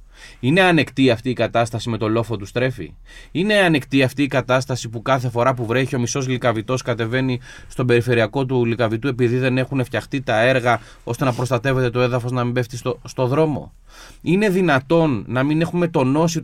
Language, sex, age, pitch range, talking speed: Greek, male, 20-39, 120-165 Hz, 185 wpm